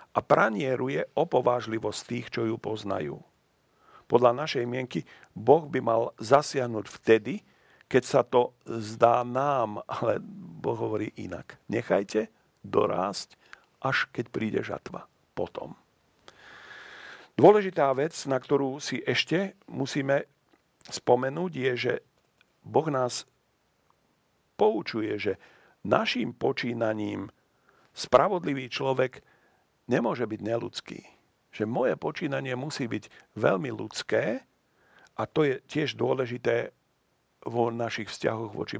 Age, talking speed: 50-69, 105 wpm